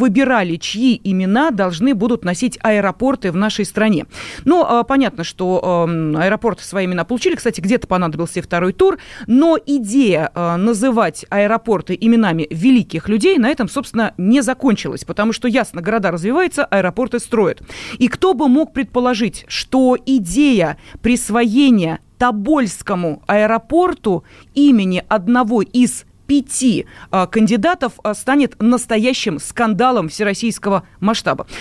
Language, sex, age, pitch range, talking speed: Russian, female, 30-49, 195-265 Hz, 115 wpm